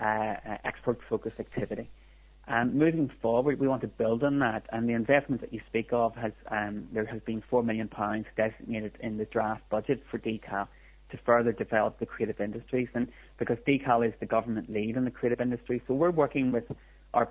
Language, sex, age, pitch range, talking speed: English, male, 30-49, 110-125 Hz, 200 wpm